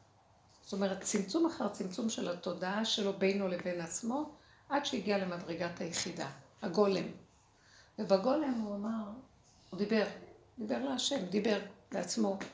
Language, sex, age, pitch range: Hebrew, female, 60-79, 185-255 Hz